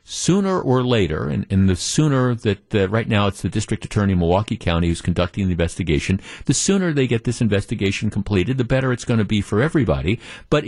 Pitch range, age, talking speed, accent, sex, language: 100-130 Hz, 50-69, 210 wpm, American, male, English